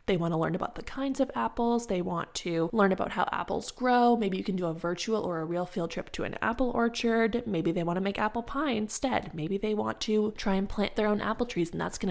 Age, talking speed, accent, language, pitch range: 20-39, 270 wpm, American, English, 170-215 Hz